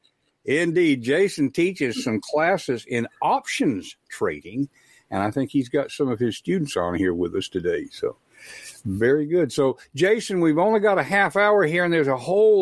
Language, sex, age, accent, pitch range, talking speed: English, male, 60-79, American, 110-175 Hz, 180 wpm